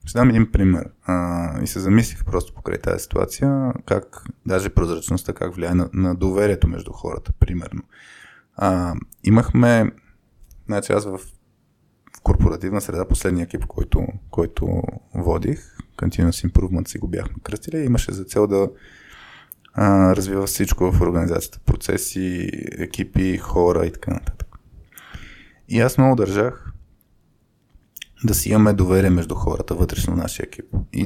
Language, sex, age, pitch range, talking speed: Bulgarian, male, 20-39, 90-110 Hz, 135 wpm